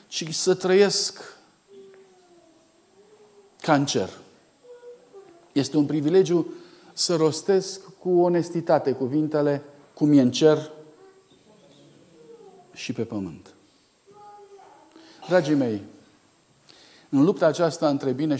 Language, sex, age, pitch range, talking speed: Romanian, male, 50-69, 135-195 Hz, 90 wpm